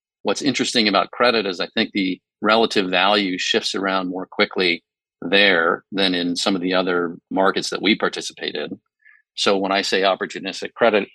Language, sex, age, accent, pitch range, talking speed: English, male, 40-59, American, 90-105 Hz, 170 wpm